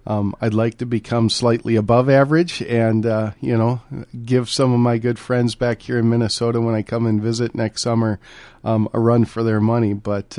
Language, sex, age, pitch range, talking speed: English, male, 40-59, 110-130 Hz, 210 wpm